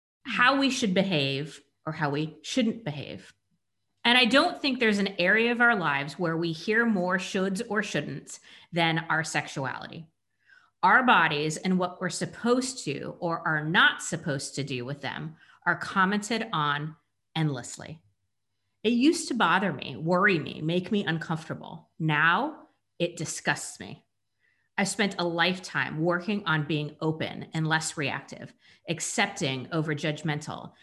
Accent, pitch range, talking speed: American, 155-205 Hz, 150 wpm